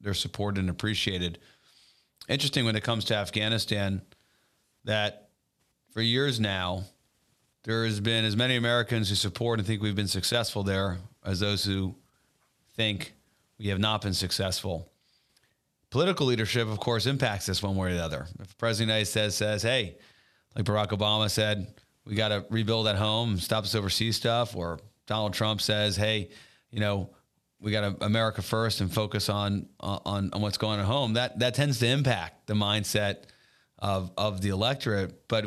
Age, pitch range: 40-59, 100-115 Hz